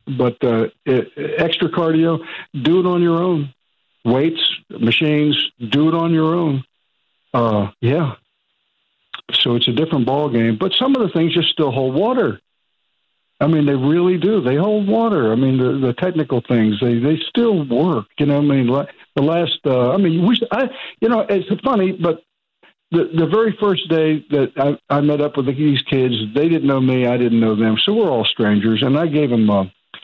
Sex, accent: male, American